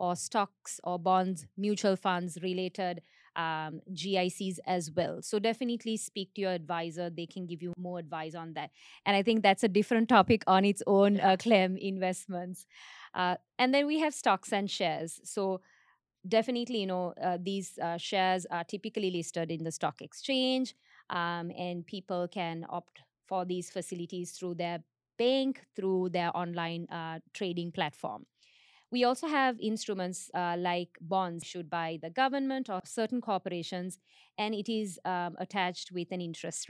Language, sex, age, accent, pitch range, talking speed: English, female, 20-39, Indian, 175-205 Hz, 165 wpm